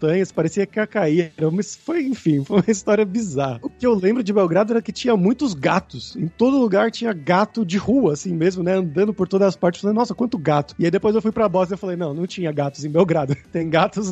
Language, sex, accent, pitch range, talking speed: Portuguese, male, Brazilian, 165-215 Hz, 250 wpm